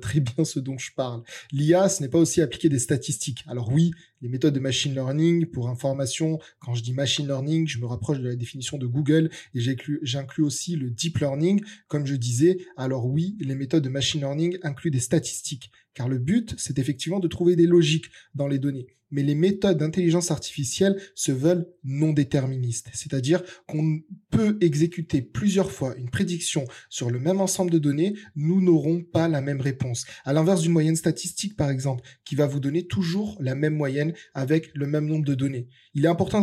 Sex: male